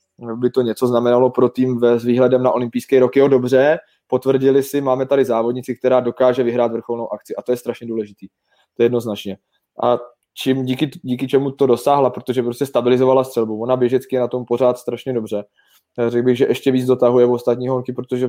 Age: 20-39